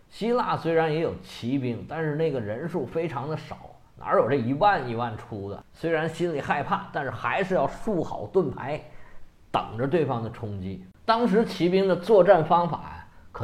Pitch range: 130-200 Hz